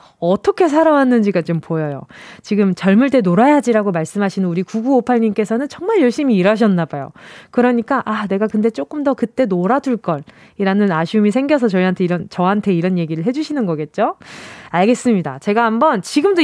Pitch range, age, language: 205-320 Hz, 20-39, Korean